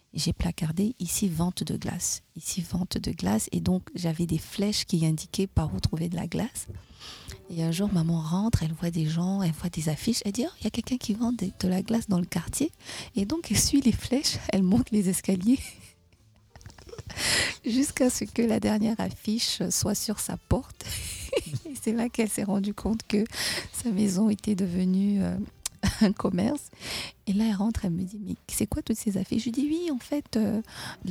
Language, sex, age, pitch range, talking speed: French, female, 30-49, 165-220 Hz, 205 wpm